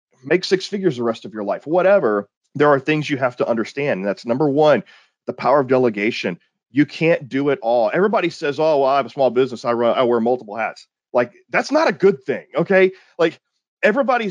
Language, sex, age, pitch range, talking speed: English, male, 30-49, 130-195 Hz, 220 wpm